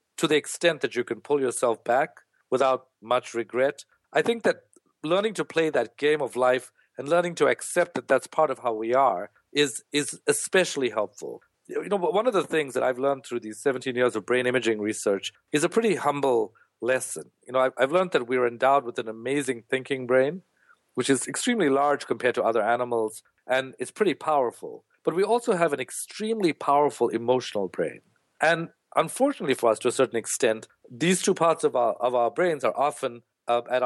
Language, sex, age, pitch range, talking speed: English, male, 50-69, 125-170 Hz, 200 wpm